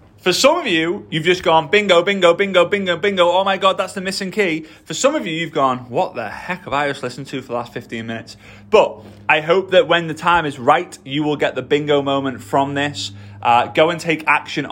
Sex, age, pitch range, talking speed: male, 20-39, 115-165 Hz, 245 wpm